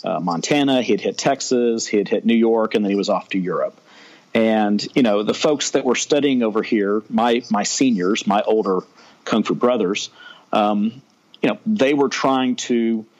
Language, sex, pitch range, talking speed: English, male, 110-130 Hz, 185 wpm